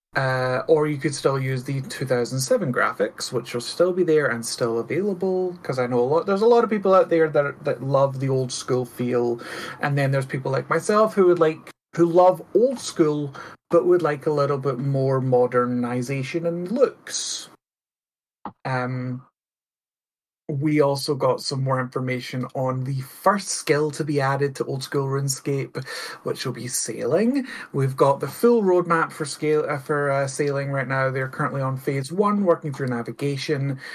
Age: 30-49